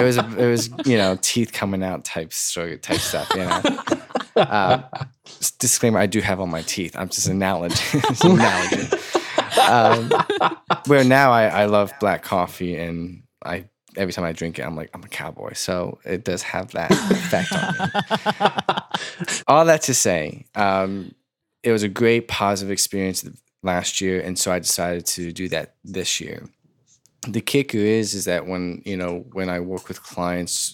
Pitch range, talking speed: 90-110 Hz, 180 wpm